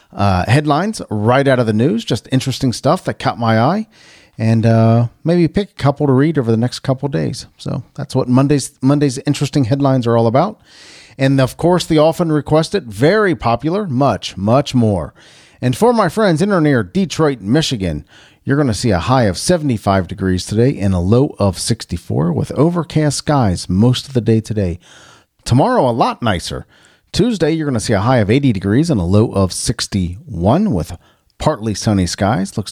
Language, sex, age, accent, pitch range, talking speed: English, male, 40-59, American, 105-155 Hz, 190 wpm